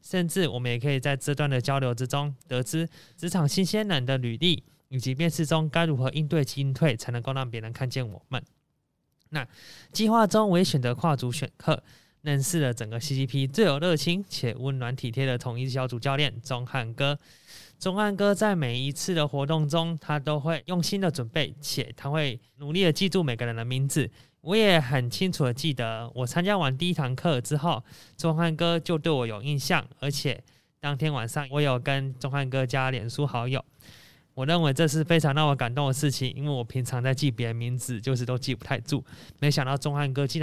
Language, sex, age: Chinese, male, 20-39